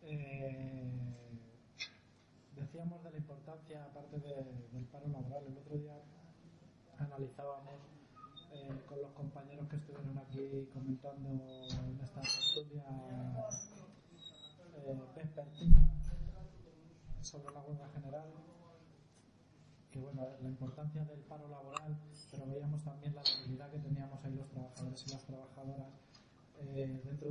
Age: 20-39